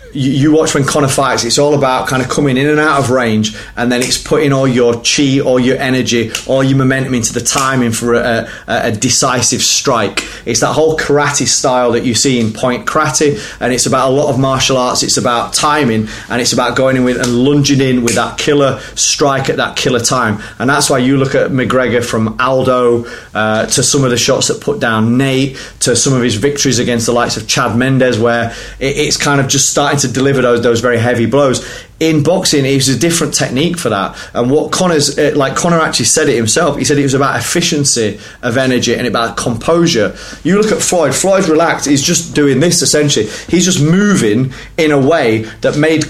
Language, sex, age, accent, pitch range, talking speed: English, male, 30-49, British, 120-145 Hz, 220 wpm